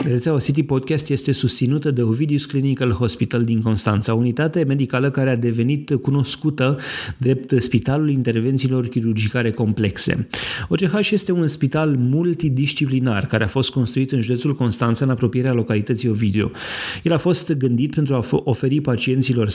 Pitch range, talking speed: 115-135 Hz, 140 wpm